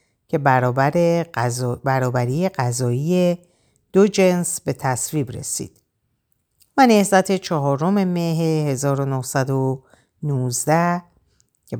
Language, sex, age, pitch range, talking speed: Persian, female, 50-69, 125-175 Hz, 80 wpm